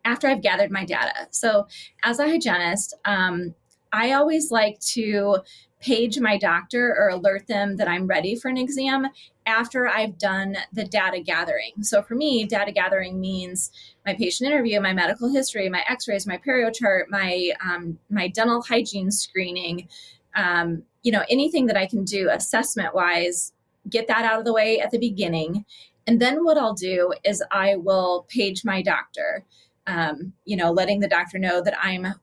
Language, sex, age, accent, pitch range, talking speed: English, female, 20-39, American, 190-240 Hz, 175 wpm